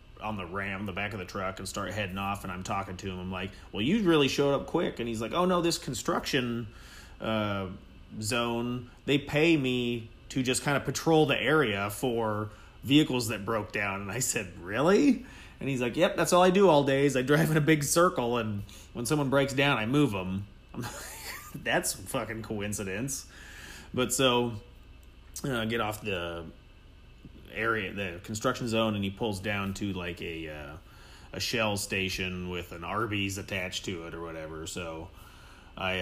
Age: 30-49